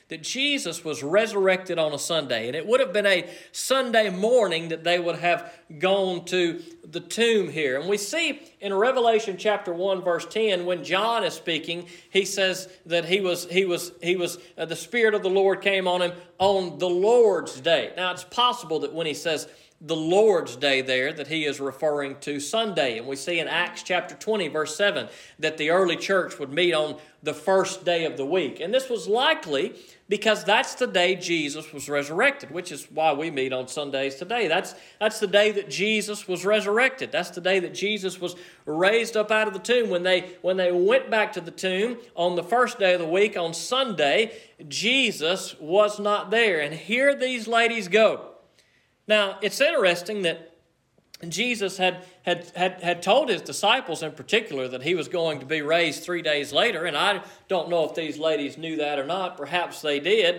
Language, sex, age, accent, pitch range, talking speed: English, male, 40-59, American, 165-210 Hz, 200 wpm